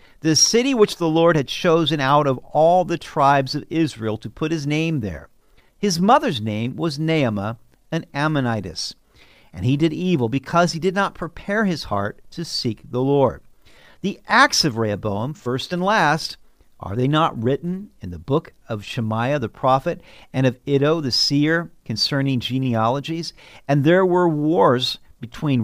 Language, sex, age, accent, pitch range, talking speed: English, male, 50-69, American, 115-170 Hz, 165 wpm